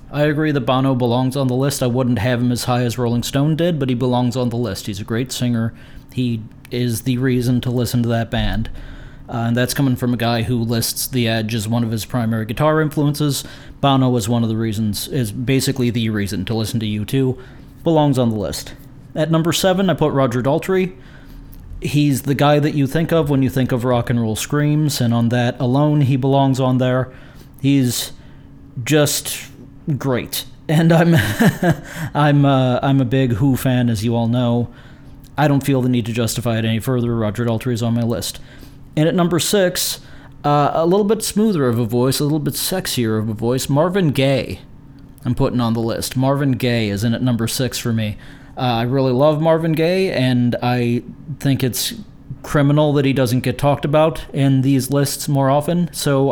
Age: 30-49